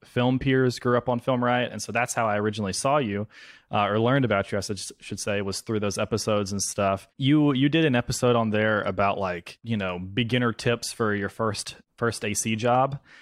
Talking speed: 220 wpm